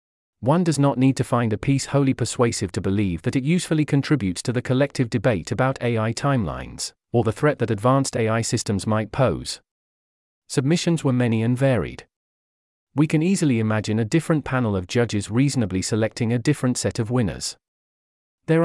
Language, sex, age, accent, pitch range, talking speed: English, male, 40-59, British, 105-140 Hz, 175 wpm